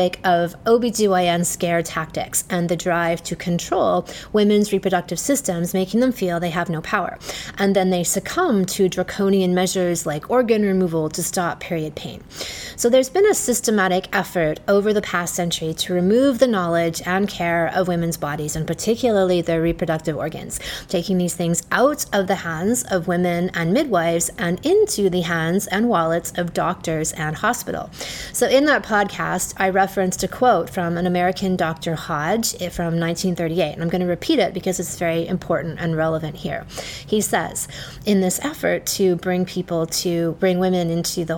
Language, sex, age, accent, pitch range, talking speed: English, female, 30-49, American, 170-200 Hz, 170 wpm